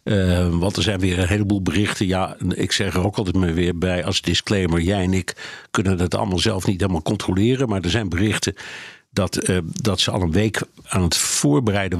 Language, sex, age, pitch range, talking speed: Dutch, male, 60-79, 95-120 Hz, 210 wpm